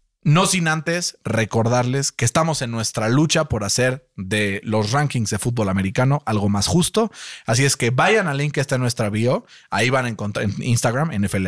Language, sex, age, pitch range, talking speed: Spanish, male, 30-49, 115-145 Hz, 200 wpm